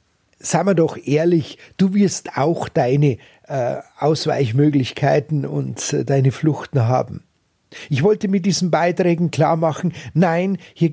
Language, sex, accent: German, male, Austrian